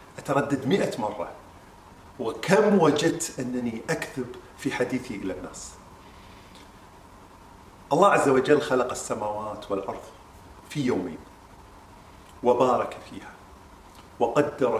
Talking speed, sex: 90 wpm, male